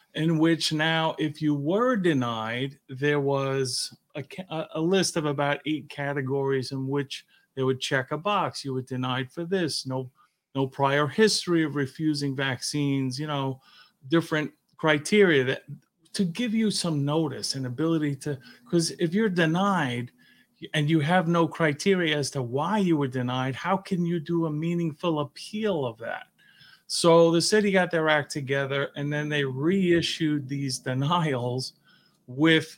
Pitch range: 135-165 Hz